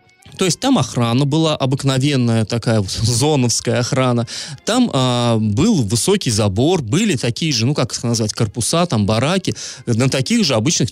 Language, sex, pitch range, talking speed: Russian, male, 120-185 Hz, 155 wpm